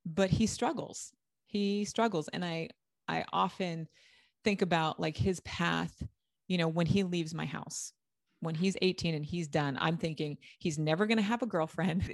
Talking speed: 180 wpm